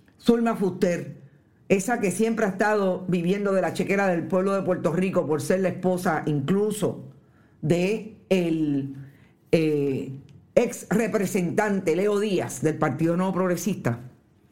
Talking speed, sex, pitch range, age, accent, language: 130 wpm, female, 155-215 Hz, 50-69, American, Spanish